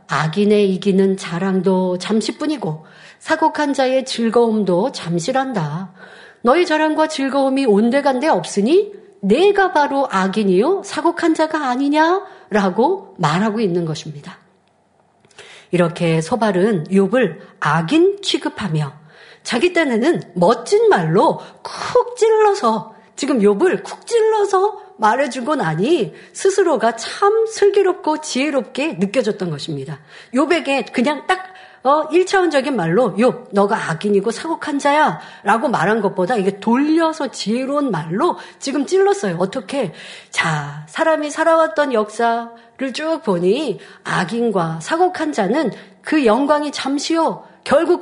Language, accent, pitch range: Korean, native, 195-315 Hz